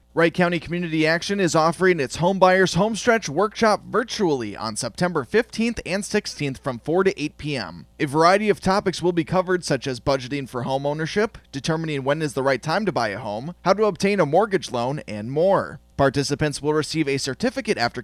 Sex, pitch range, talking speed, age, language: male, 150-210 Hz, 200 wpm, 30-49, English